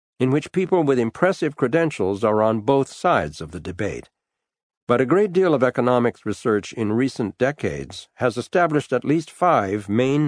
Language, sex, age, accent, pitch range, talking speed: English, male, 60-79, American, 100-130 Hz, 170 wpm